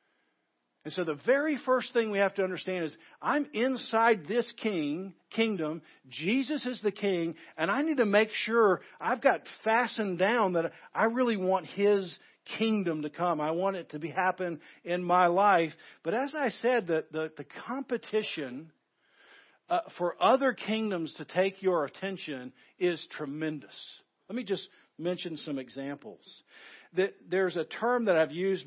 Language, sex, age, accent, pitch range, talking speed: English, male, 50-69, American, 160-215 Hz, 160 wpm